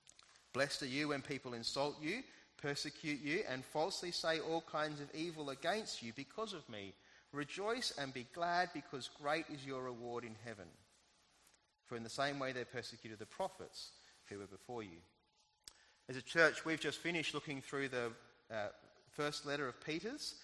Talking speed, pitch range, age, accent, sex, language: 175 wpm, 130-185 Hz, 30-49, Australian, male, English